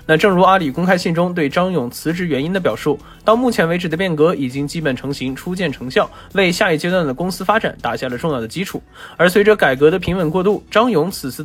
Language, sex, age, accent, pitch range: Chinese, male, 20-39, native, 140-195 Hz